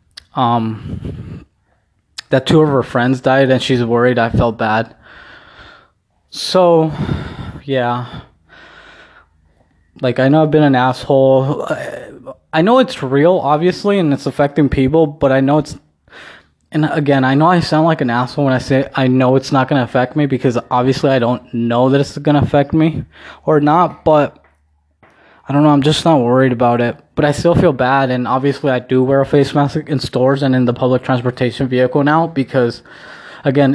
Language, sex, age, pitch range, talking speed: English, male, 20-39, 125-145 Hz, 180 wpm